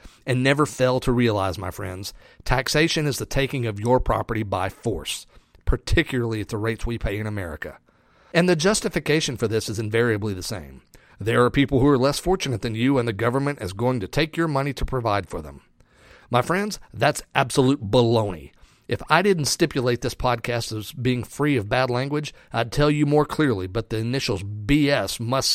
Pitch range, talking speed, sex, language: 110-145 Hz, 195 wpm, male, English